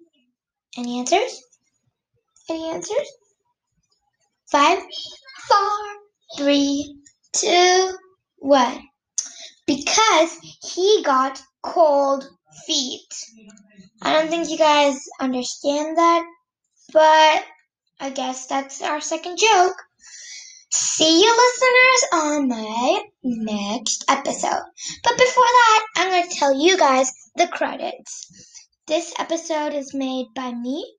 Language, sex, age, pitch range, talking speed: English, female, 10-29, 265-375 Hz, 100 wpm